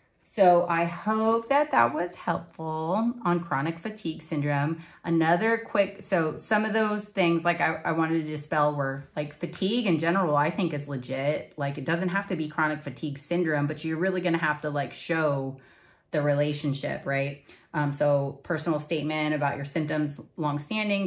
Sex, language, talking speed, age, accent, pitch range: female, English, 175 wpm, 30-49, American, 150-180 Hz